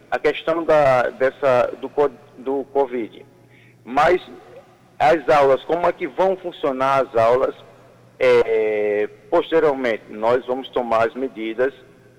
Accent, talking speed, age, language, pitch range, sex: Brazilian, 105 wpm, 50-69, Portuguese, 120-175 Hz, male